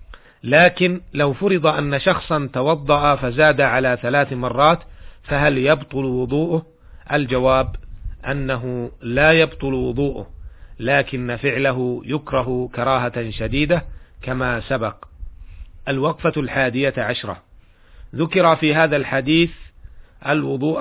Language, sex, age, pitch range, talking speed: Arabic, male, 40-59, 125-145 Hz, 95 wpm